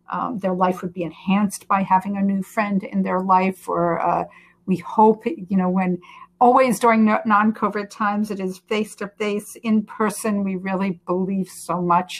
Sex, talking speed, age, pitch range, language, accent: female, 175 wpm, 50-69, 180-215 Hz, English, American